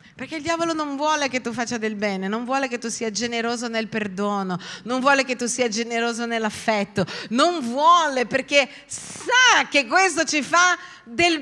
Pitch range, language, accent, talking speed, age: 190-270 Hz, Italian, native, 180 wpm, 40-59